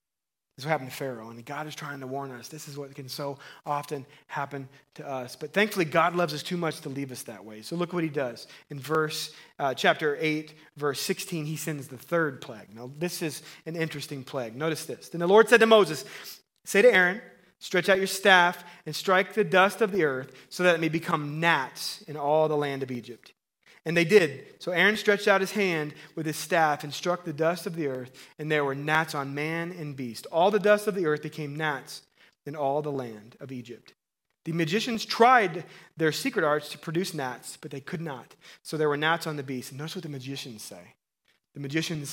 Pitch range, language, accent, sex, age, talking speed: 140-180 Hz, English, American, male, 30-49, 230 wpm